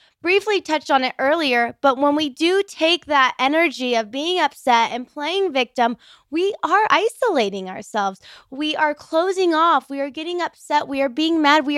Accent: American